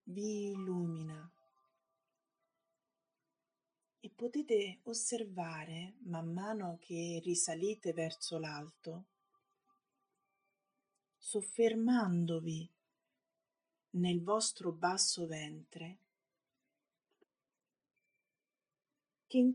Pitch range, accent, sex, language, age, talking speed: 165-220 Hz, native, female, Italian, 30-49, 55 wpm